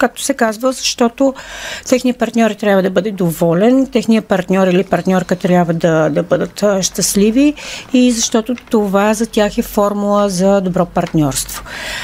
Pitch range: 180-240 Hz